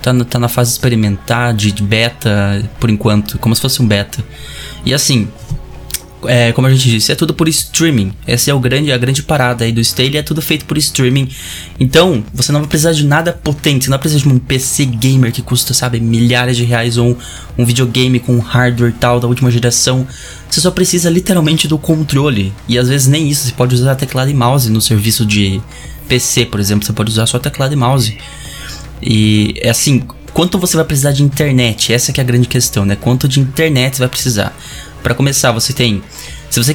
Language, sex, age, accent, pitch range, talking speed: Portuguese, male, 20-39, Brazilian, 115-140 Hz, 215 wpm